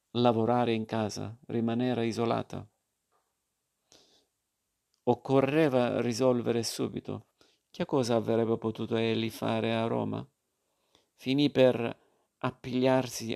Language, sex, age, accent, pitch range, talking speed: Italian, male, 50-69, native, 115-130 Hz, 85 wpm